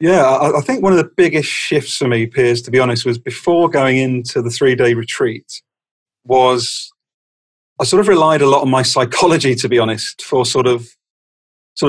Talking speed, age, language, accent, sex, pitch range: 190 wpm, 40-59, English, British, male, 120-135 Hz